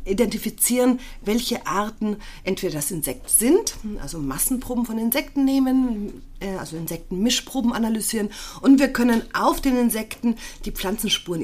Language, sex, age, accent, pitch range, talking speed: German, female, 40-59, German, 195-260 Hz, 120 wpm